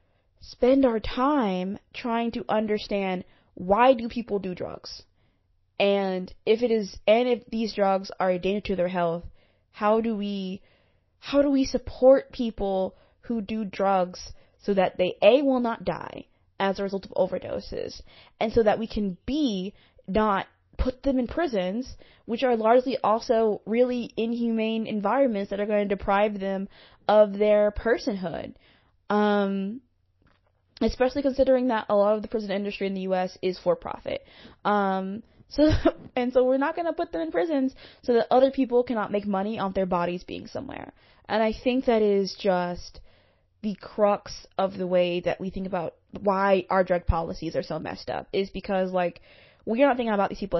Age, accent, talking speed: 20-39, American, 175 wpm